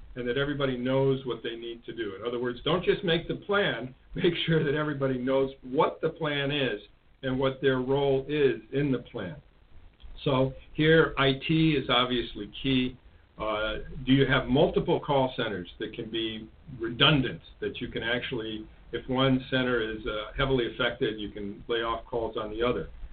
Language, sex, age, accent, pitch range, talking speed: English, male, 50-69, American, 115-140 Hz, 180 wpm